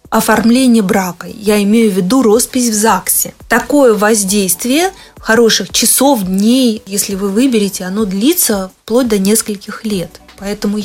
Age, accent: 20-39, native